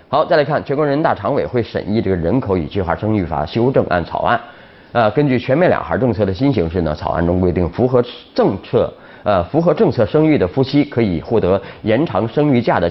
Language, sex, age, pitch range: Chinese, male, 30-49, 85-125 Hz